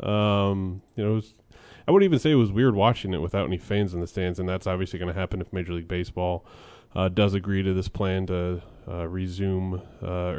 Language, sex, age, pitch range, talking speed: English, male, 20-39, 90-105 Hz, 230 wpm